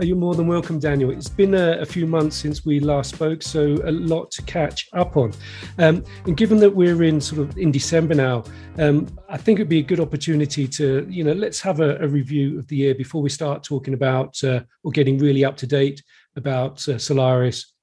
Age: 40-59